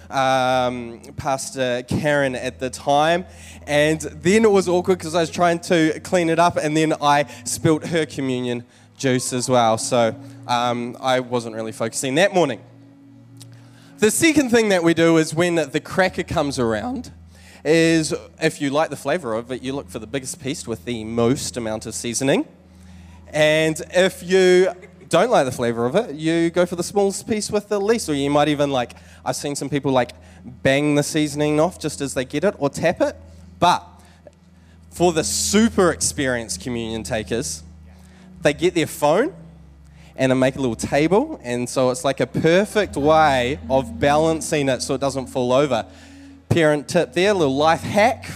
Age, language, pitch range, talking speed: 20-39, English, 120-160 Hz, 180 wpm